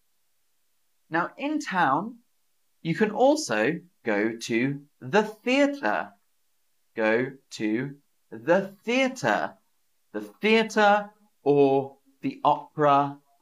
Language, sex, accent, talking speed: English, male, British, 85 wpm